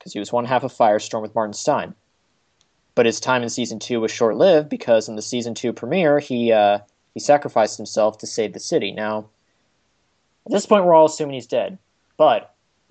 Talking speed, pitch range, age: 205 wpm, 110-150 Hz, 20-39